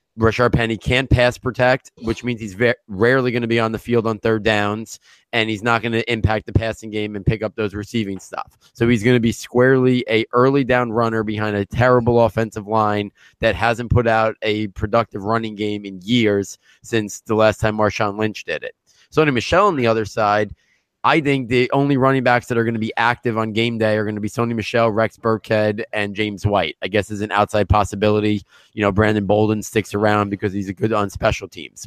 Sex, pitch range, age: male, 105-120 Hz, 20-39